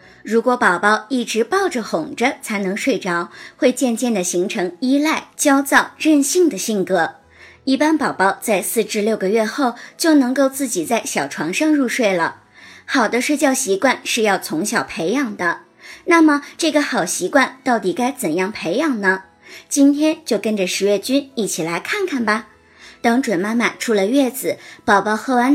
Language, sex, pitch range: Chinese, male, 200-285 Hz